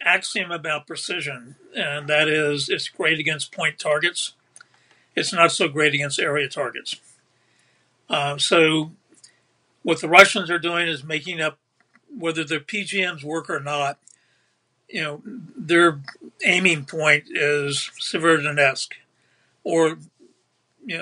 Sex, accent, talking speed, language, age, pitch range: male, American, 125 wpm, English, 60-79, 150-175 Hz